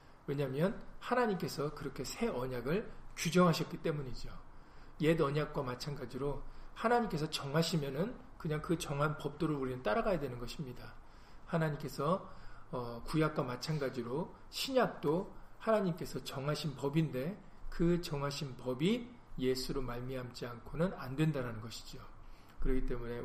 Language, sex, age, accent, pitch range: Korean, male, 40-59, native, 125-165 Hz